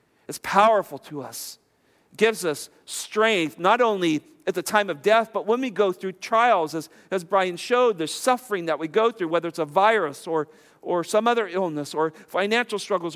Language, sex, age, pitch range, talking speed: English, male, 50-69, 160-225 Hz, 190 wpm